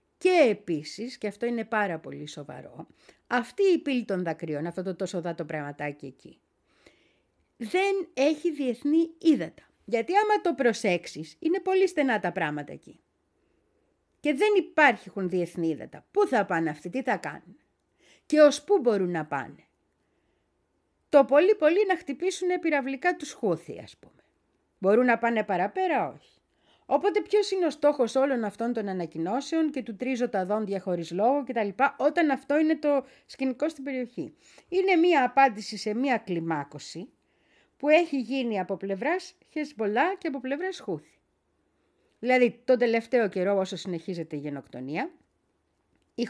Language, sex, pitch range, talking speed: Greek, female, 190-300 Hz, 150 wpm